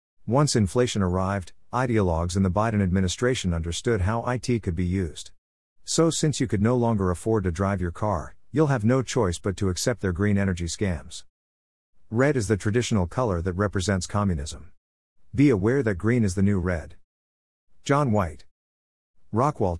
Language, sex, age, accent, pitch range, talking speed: English, male, 50-69, American, 85-115 Hz, 170 wpm